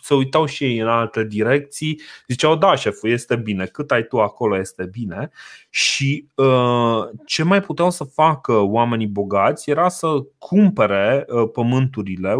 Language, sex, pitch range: Romanian, male, 110-140 Hz